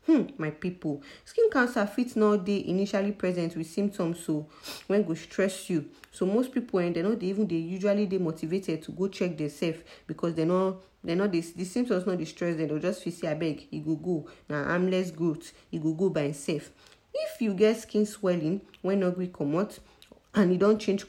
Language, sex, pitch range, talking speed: English, female, 165-215 Hz, 220 wpm